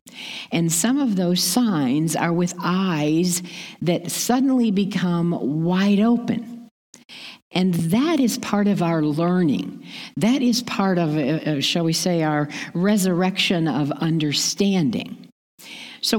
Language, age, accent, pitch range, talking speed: English, 50-69, American, 160-235 Hz, 120 wpm